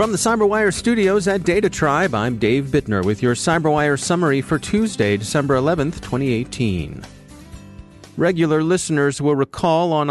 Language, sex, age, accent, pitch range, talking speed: English, male, 40-59, American, 120-155 Hz, 135 wpm